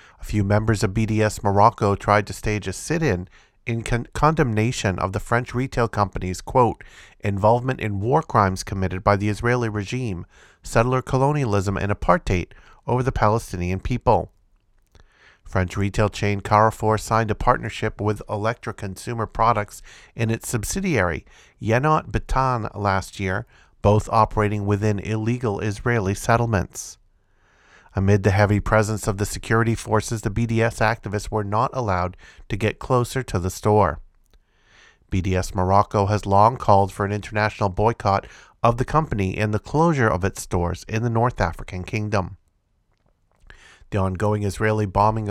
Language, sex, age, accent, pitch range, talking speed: English, male, 40-59, American, 100-115 Hz, 145 wpm